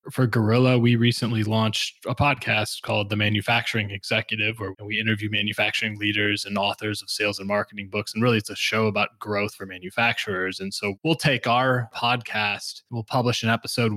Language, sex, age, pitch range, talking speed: English, male, 20-39, 105-115 Hz, 180 wpm